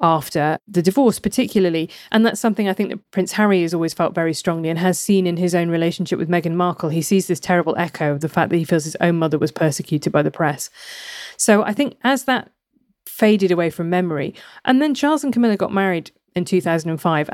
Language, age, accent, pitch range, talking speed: English, 30-49, British, 165-195 Hz, 220 wpm